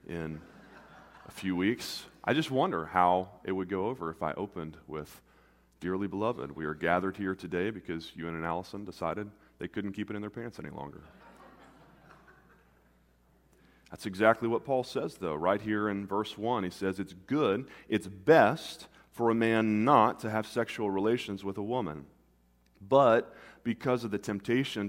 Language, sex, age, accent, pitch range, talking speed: English, male, 30-49, American, 85-115 Hz, 170 wpm